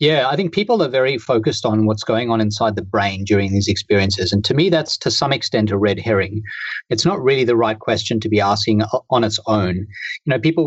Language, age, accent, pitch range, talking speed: English, 40-59, Australian, 110-150 Hz, 235 wpm